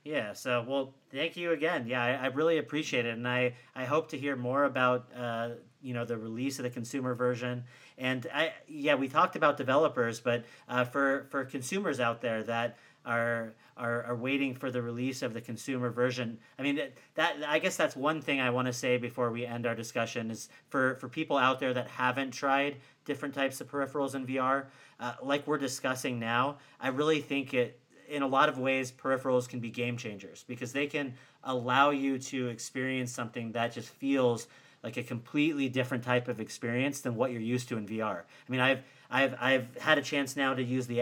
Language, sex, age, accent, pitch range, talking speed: English, male, 40-59, American, 120-135 Hz, 210 wpm